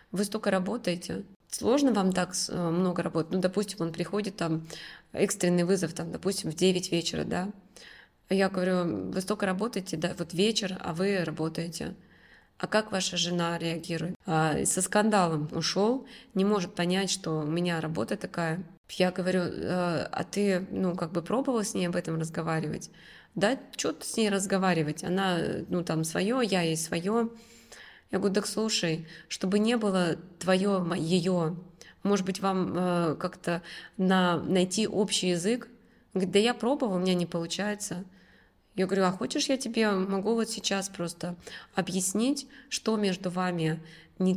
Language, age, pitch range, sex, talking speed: Russian, 20-39, 170-200 Hz, female, 155 wpm